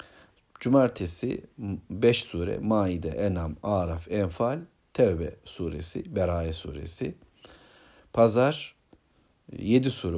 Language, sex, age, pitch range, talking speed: Turkish, male, 60-79, 90-120 Hz, 85 wpm